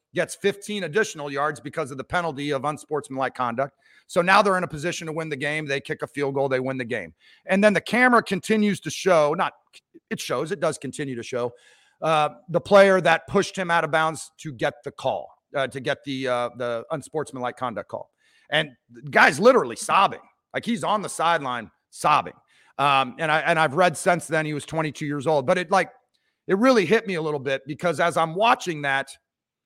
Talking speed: 215 wpm